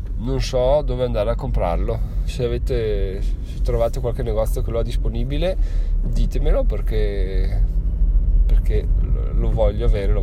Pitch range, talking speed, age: 85-115 Hz, 135 wpm, 20-39